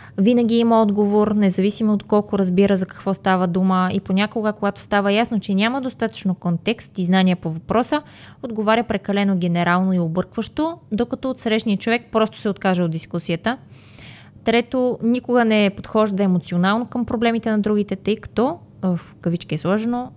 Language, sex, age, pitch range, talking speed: Bulgarian, female, 20-39, 180-230 Hz, 160 wpm